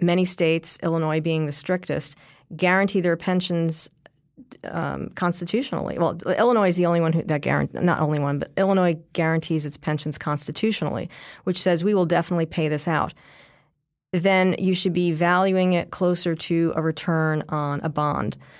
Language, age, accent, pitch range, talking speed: English, 40-59, American, 155-185 Hz, 155 wpm